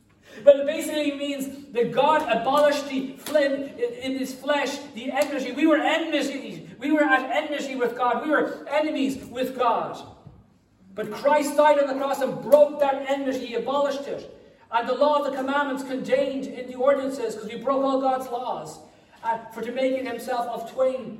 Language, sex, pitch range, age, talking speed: English, male, 200-275 Hz, 40-59, 185 wpm